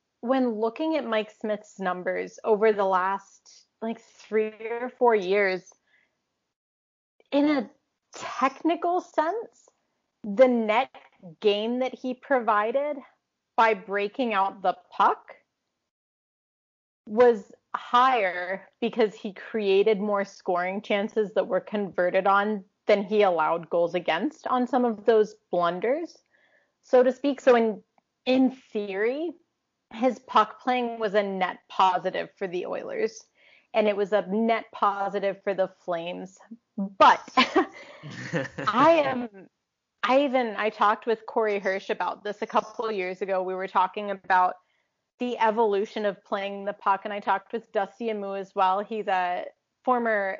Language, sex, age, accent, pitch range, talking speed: English, female, 30-49, American, 195-245 Hz, 135 wpm